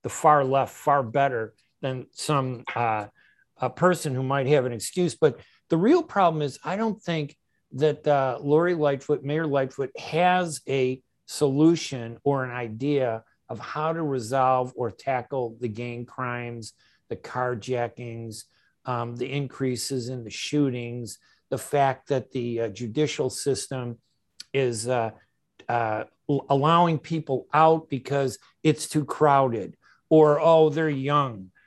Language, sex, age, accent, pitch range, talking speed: English, male, 50-69, American, 130-165 Hz, 135 wpm